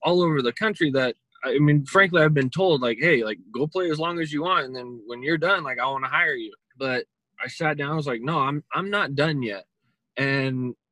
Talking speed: 255 wpm